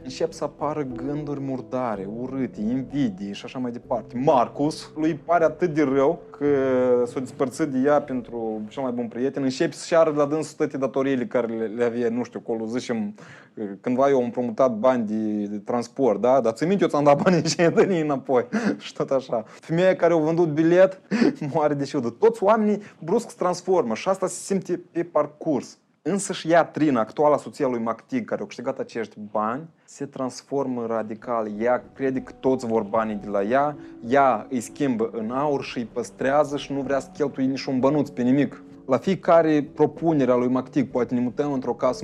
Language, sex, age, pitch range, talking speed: Romanian, male, 20-39, 125-165 Hz, 190 wpm